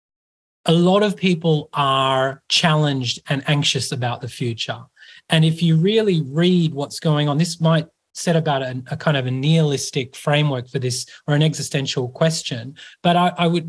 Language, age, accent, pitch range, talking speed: English, 30-49, Australian, 140-175 Hz, 175 wpm